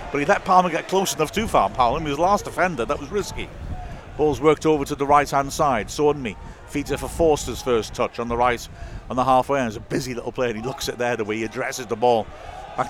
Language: English